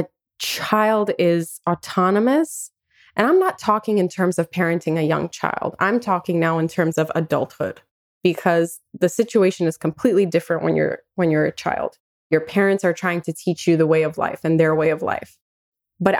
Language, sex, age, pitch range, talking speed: English, female, 20-39, 160-190 Hz, 185 wpm